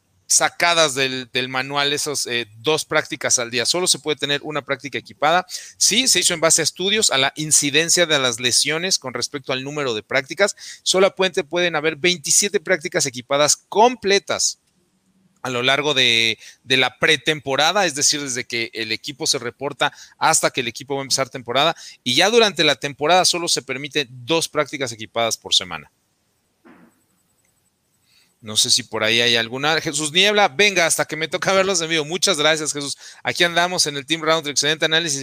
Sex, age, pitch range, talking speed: male, 40-59, 130-165 Hz, 185 wpm